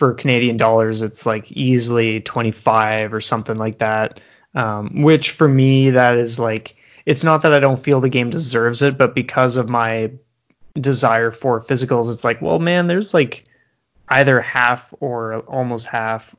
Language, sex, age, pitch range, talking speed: English, male, 20-39, 115-140 Hz, 170 wpm